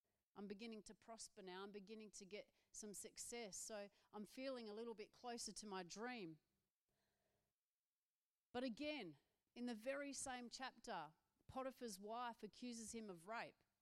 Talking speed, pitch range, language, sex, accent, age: 150 wpm, 195-245 Hz, English, female, Australian, 40-59